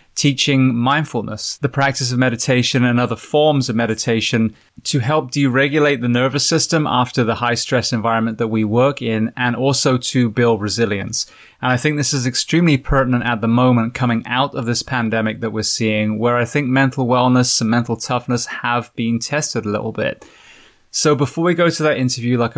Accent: British